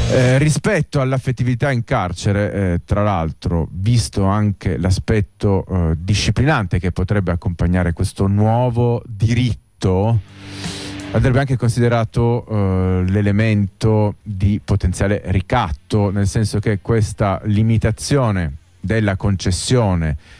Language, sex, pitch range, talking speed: Italian, male, 95-115 Hz, 100 wpm